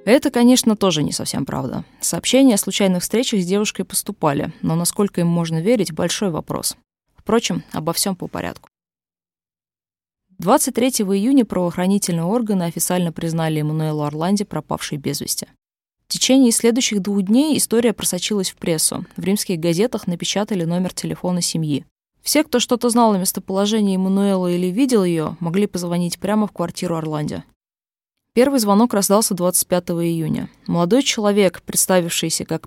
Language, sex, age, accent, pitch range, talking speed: Russian, female, 20-39, native, 165-210 Hz, 140 wpm